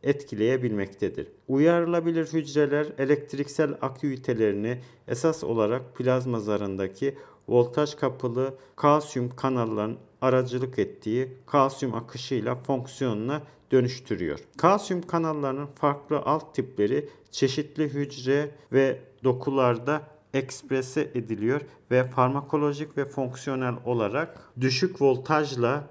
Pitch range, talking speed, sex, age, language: 130-150 Hz, 85 wpm, male, 50-69, Turkish